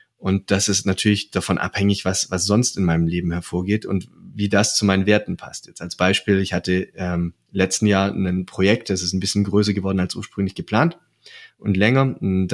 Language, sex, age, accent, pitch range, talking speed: German, male, 30-49, German, 95-110 Hz, 200 wpm